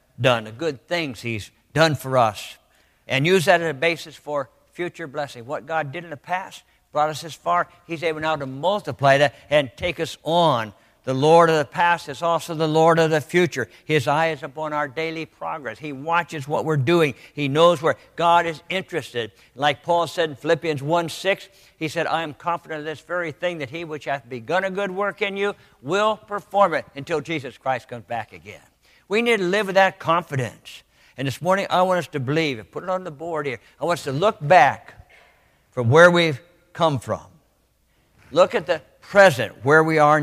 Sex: male